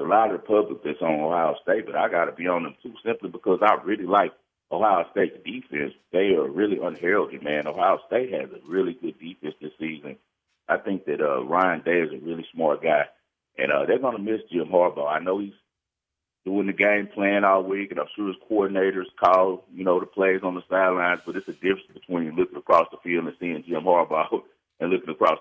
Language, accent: English, American